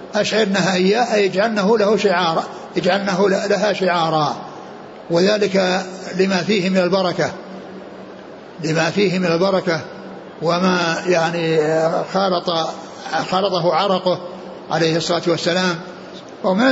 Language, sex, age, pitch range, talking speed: Arabic, male, 60-79, 175-200 Hz, 95 wpm